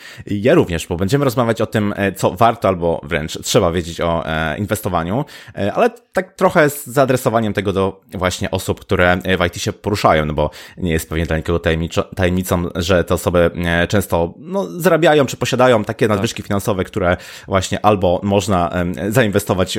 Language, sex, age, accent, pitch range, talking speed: Polish, male, 20-39, native, 85-105 Hz, 165 wpm